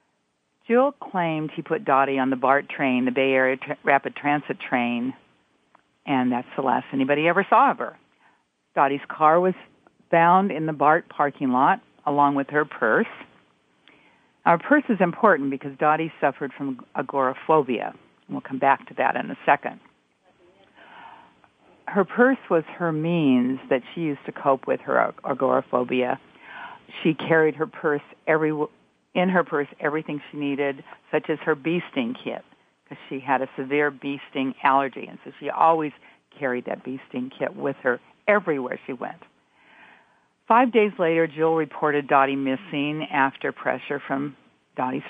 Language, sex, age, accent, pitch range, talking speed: English, female, 50-69, American, 135-165 Hz, 155 wpm